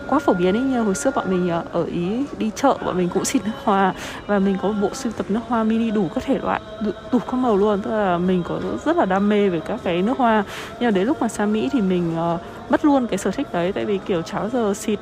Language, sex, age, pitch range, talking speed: Vietnamese, female, 20-39, 185-225 Hz, 285 wpm